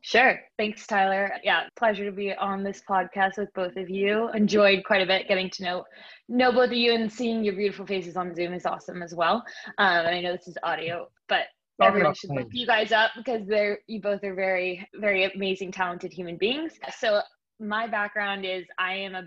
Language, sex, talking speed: English, female, 210 wpm